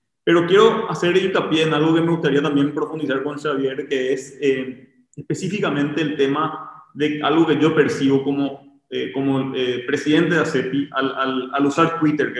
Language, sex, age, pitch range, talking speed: Spanish, male, 30-49, 135-160 Hz, 180 wpm